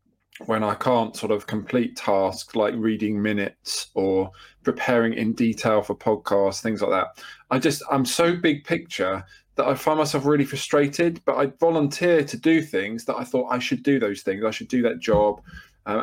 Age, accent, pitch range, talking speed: 20-39, British, 110-135 Hz, 190 wpm